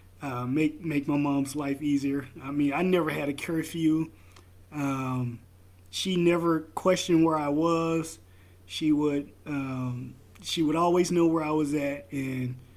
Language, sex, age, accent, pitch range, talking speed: English, male, 20-39, American, 95-155 Hz, 155 wpm